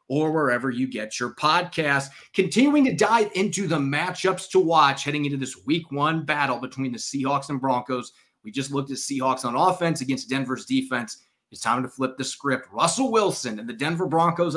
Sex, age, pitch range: male, 30-49, 130-165 Hz